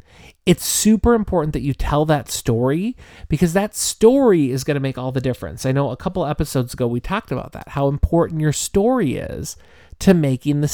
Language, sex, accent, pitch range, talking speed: English, male, American, 125-160 Hz, 200 wpm